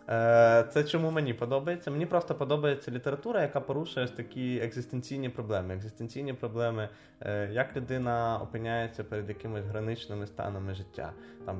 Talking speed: 130 wpm